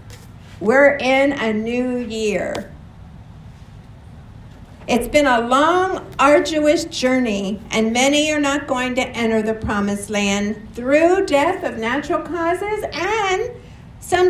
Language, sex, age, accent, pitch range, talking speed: English, female, 50-69, American, 220-315 Hz, 115 wpm